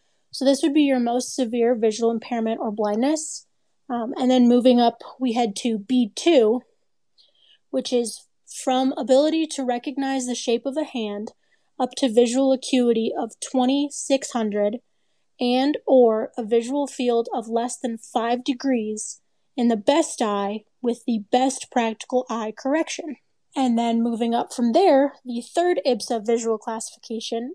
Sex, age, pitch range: female, 20-39, 230-270 Hz